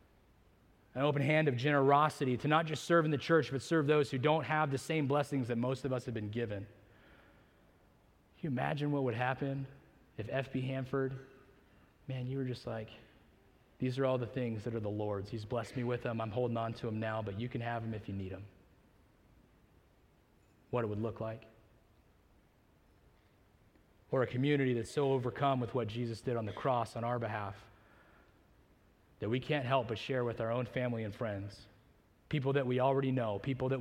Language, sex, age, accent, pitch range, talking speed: English, male, 30-49, American, 110-145 Hz, 195 wpm